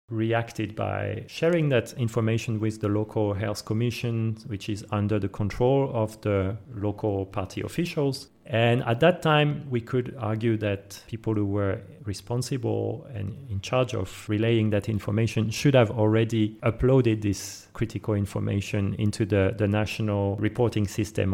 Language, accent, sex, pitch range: English, French, male, 105-125 Hz